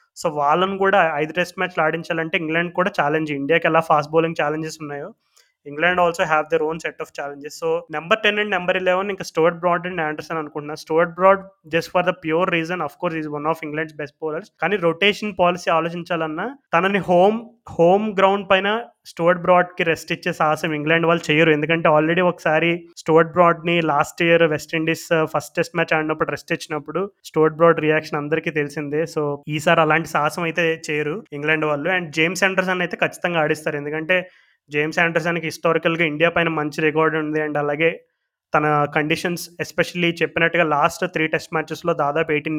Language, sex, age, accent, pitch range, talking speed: Telugu, male, 20-39, native, 155-180 Hz, 185 wpm